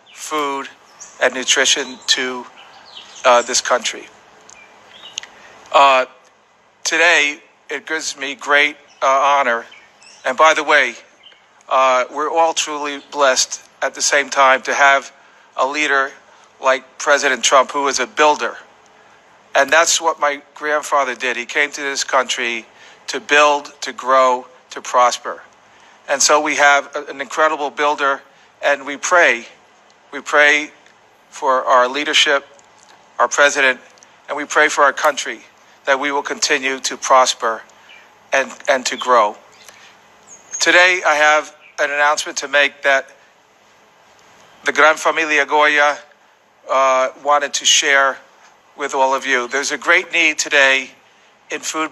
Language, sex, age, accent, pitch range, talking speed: English, male, 40-59, American, 135-150 Hz, 135 wpm